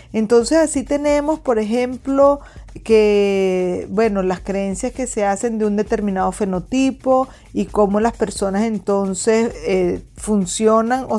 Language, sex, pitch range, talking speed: Spanish, female, 195-235 Hz, 130 wpm